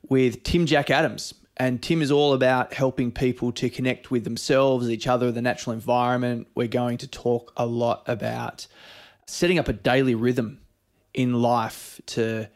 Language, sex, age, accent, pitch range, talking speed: English, male, 20-39, Australian, 115-130 Hz, 165 wpm